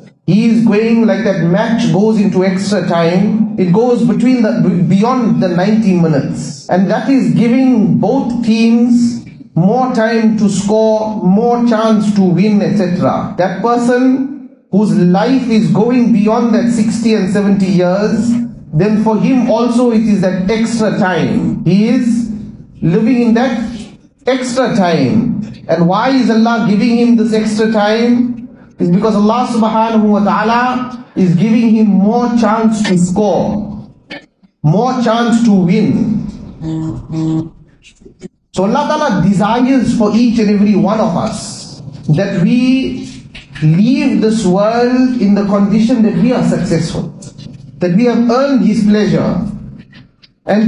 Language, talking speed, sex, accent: English, 140 wpm, male, Indian